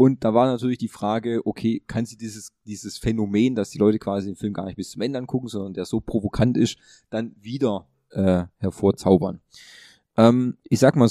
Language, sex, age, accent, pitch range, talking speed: German, male, 20-39, German, 105-125 Hz, 200 wpm